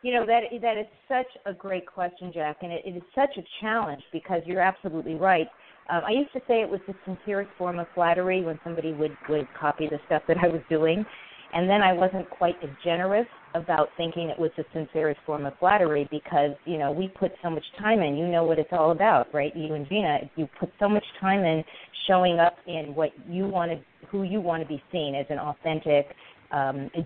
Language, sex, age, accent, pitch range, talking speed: English, female, 50-69, American, 155-195 Hz, 225 wpm